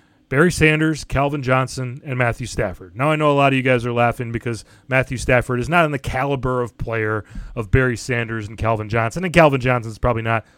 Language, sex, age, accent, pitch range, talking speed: English, male, 30-49, American, 120-150 Hz, 220 wpm